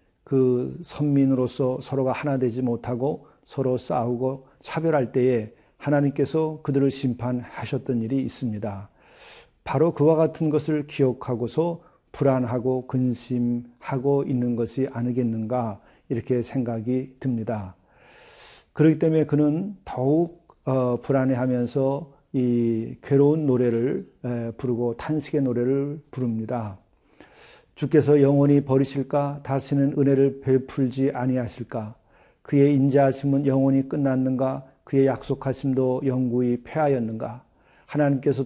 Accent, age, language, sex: native, 40-59, Korean, male